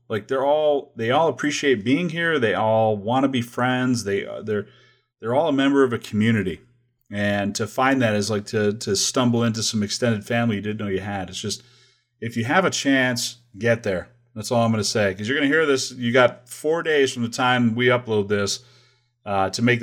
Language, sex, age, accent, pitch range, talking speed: English, male, 30-49, American, 105-125 Hz, 225 wpm